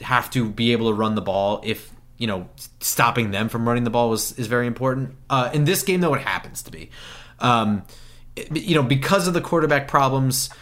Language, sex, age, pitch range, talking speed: English, male, 30-49, 110-140 Hz, 220 wpm